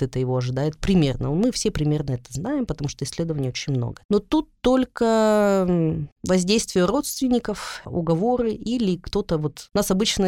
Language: Russian